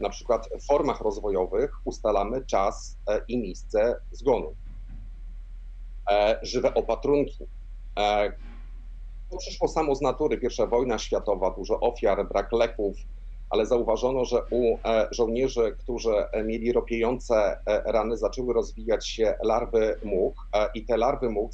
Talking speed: 115 wpm